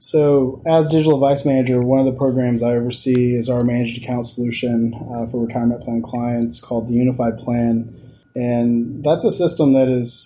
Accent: American